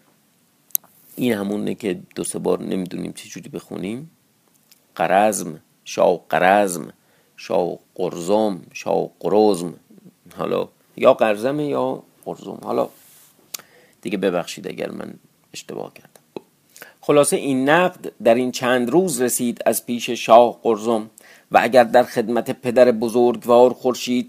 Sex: male